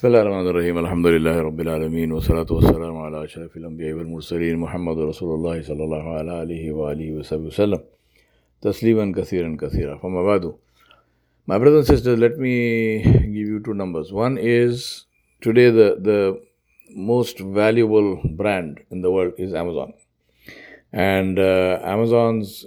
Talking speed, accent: 70 wpm, Indian